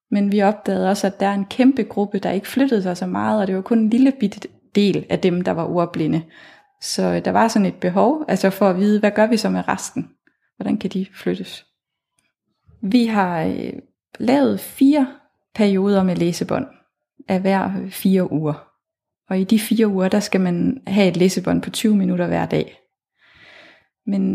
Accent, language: native, Danish